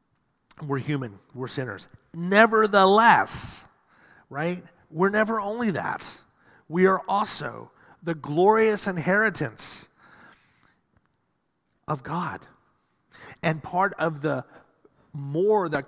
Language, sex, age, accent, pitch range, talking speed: English, male, 40-59, American, 135-180 Hz, 90 wpm